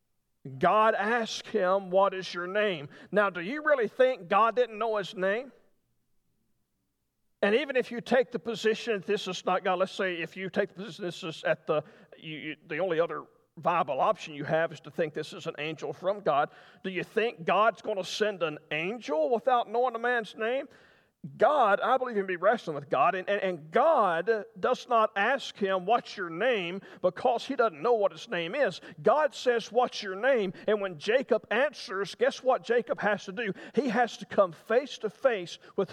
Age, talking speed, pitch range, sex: 50-69, 205 wpm, 185-240 Hz, male